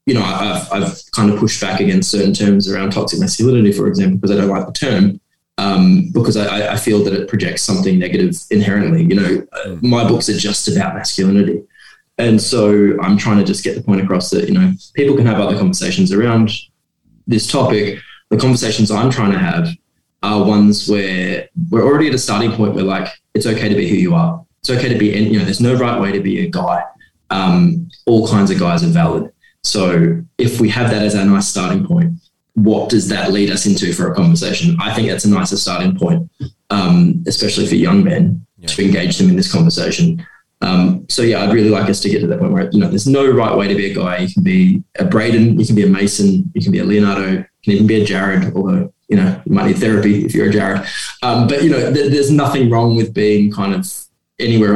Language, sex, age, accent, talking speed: English, male, 20-39, Australian, 230 wpm